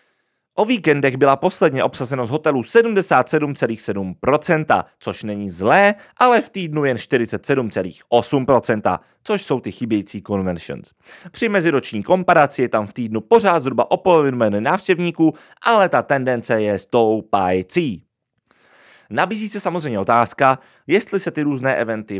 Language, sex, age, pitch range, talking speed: Czech, male, 30-49, 105-165 Hz, 130 wpm